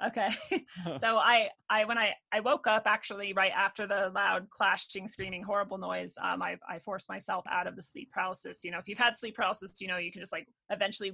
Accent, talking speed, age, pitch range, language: American, 225 wpm, 30-49, 190-235 Hz, English